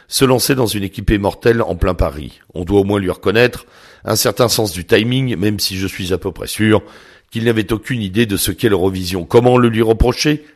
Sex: male